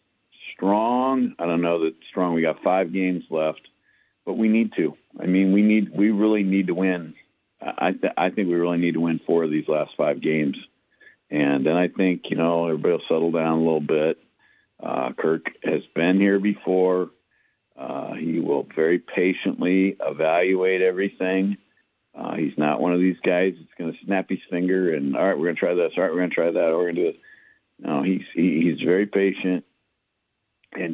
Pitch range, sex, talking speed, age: 80-100 Hz, male, 195 wpm, 50-69